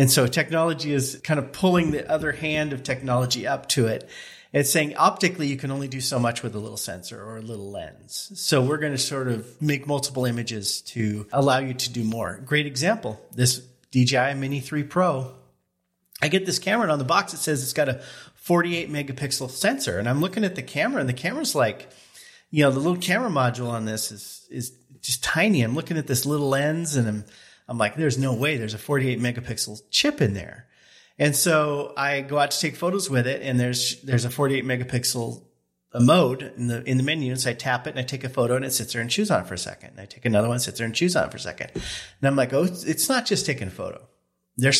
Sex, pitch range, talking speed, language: male, 120-150 Hz, 240 wpm, English